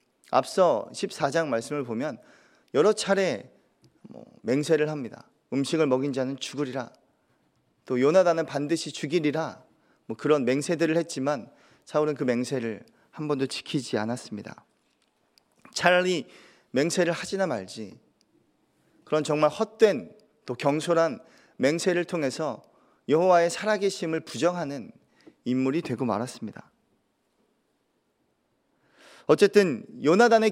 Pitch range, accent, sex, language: 130-170 Hz, native, male, Korean